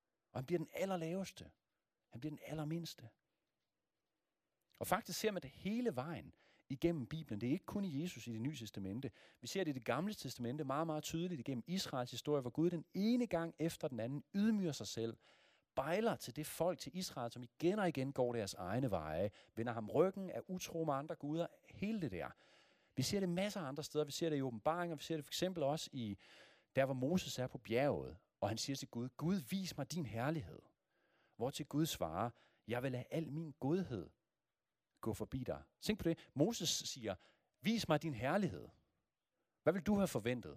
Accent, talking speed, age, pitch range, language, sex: native, 205 wpm, 40-59, 120-170 Hz, Danish, male